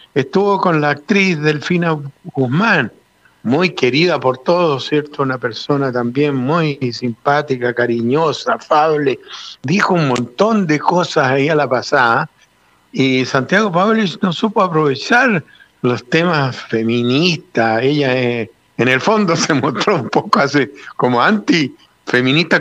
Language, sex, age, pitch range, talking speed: Spanish, male, 60-79, 130-175 Hz, 130 wpm